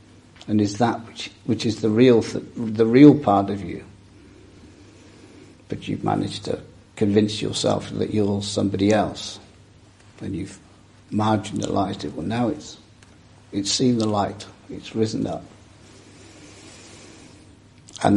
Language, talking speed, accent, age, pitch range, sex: English, 130 wpm, British, 60-79, 100-115 Hz, male